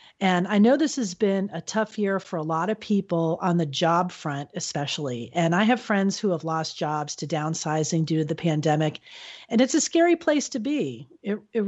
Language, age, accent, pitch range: English, 40-59, American, 165-230 Hz